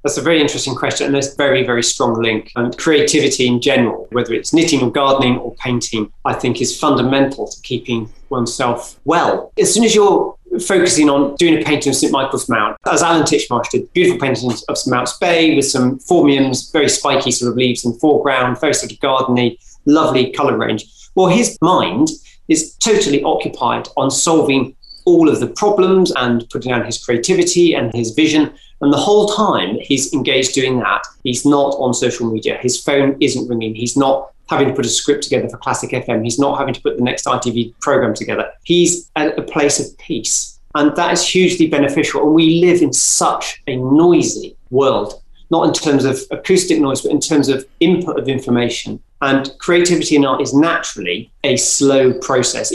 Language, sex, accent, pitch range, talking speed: English, male, British, 125-170 Hz, 195 wpm